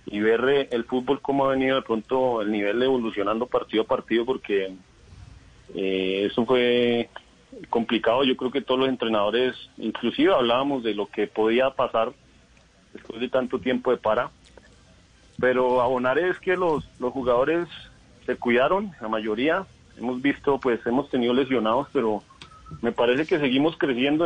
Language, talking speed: Spanish, 155 wpm